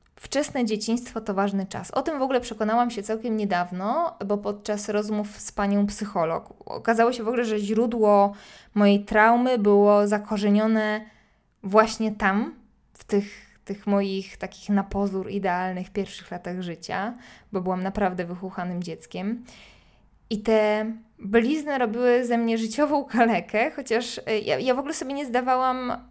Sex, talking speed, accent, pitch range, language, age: female, 145 wpm, native, 200-240 Hz, Polish, 20-39